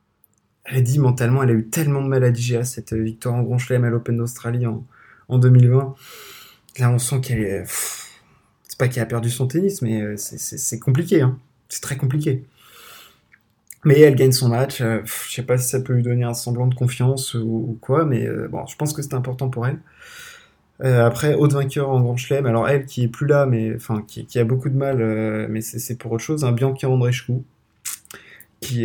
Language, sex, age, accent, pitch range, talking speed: French, male, 20-39, French, 115-135 Hz, 230 wpm